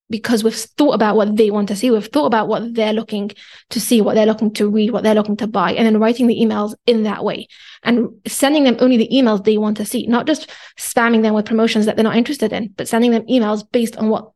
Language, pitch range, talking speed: English, 215-235 Hz, 265 wpm